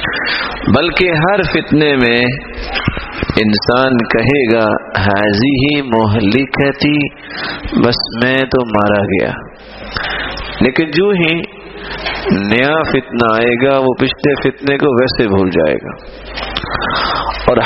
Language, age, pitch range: English, 50-69, 115-160 Hz